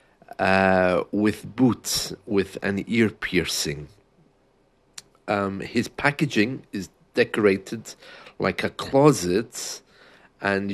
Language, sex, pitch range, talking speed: English, male, 95-110 Hz, 90 wpm